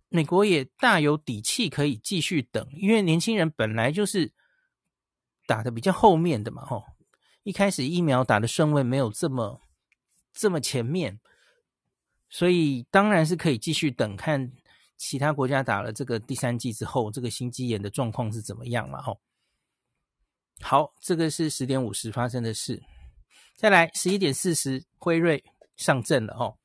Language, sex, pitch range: Chinese, male, 125-170 Hz